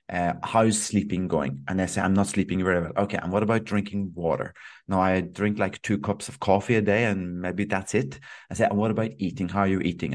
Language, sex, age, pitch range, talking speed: English, male, 30-49, 95-105 Hz, 250 wpm